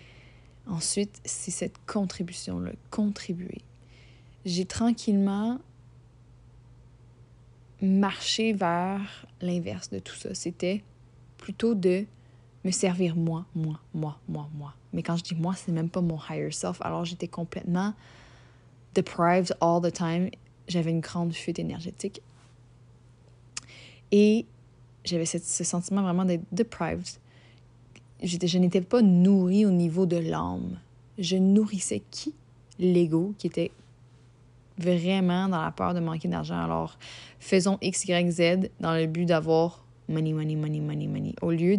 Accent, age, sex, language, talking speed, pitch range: Canadian, 20-39, female, French, 130 wpm, 120-190 Hz